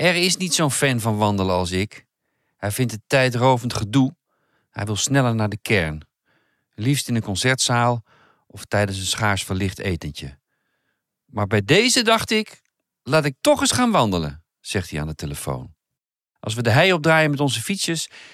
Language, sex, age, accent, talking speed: Dutch, male, 40-59, Dutch, 175 wpm